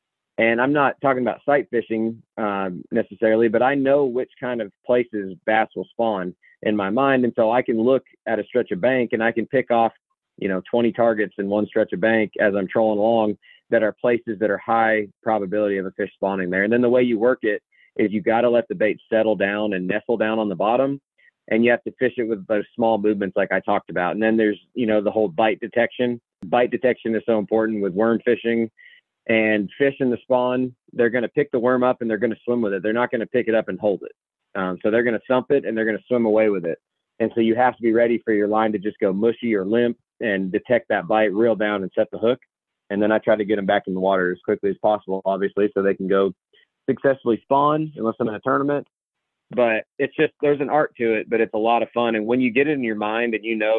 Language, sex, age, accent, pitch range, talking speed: English, male, 30-49, American, 105-120 Hz, 265 wpm